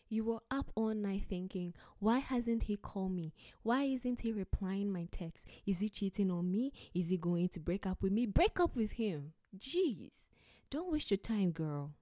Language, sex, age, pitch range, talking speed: English, female, 20-39, 165-210 Hz, 200 wpm